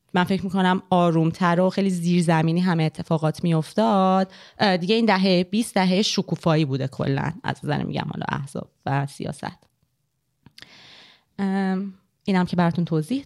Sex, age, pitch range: female, 20-39, 160-200 Hz